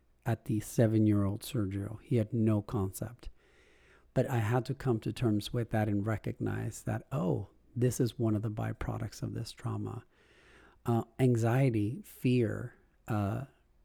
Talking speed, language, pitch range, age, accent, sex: 145 wpm, English, 110-135 Hz, 50-69, American, male